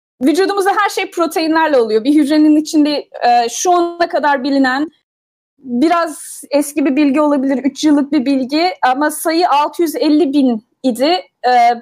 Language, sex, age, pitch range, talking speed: Turkish, female, 30-49, 255-320 Hz, 130 wpm